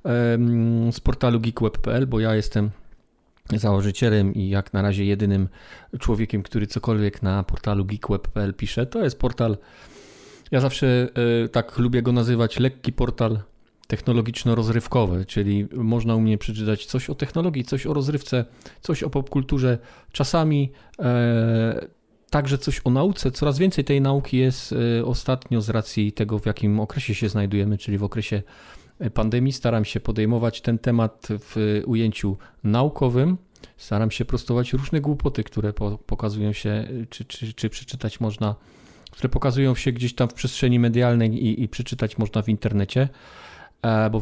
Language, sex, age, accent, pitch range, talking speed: Polish, male, 40-59, native, 105-130 Hz, 140 wpm